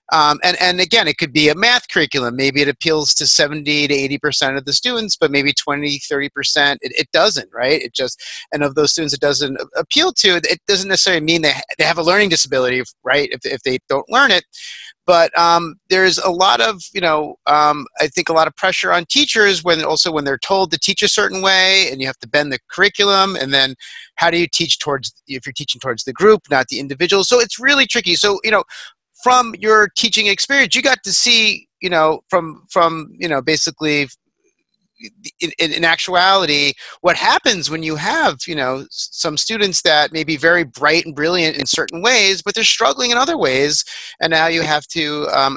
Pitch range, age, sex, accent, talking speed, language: 145-205 Hz, 30-49, male, American, 215 wpm, English